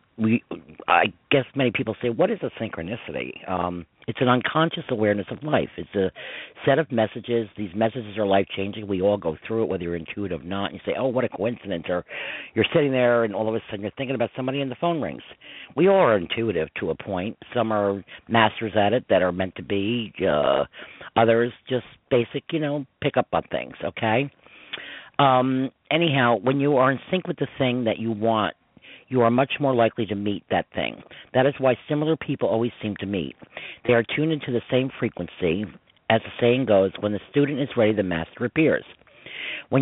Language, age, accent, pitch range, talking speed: English, 50-69, American, 105-135 Hz, 210 wpm